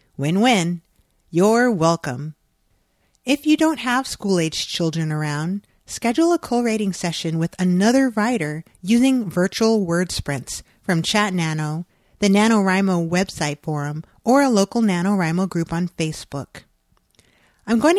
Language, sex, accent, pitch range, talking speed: English, female, American, 165-230 Hz, 125 wpm